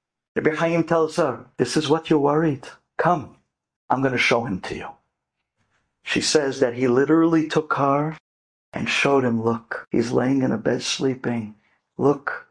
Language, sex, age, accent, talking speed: English, male, 50-69, American, 165 wpm